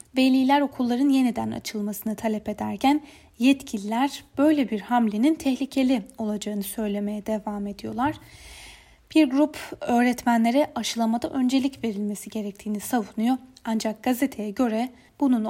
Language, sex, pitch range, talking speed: Turkish, female, 215-270 Hz, 105 wpm